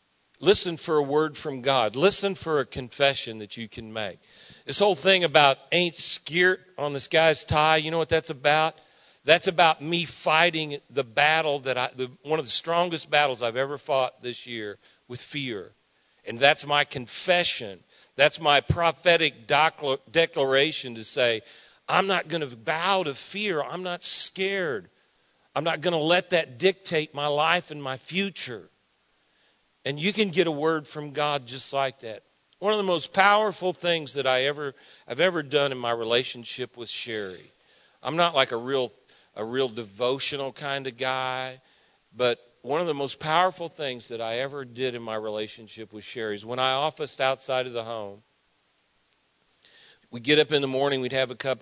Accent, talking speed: American, 180 wpm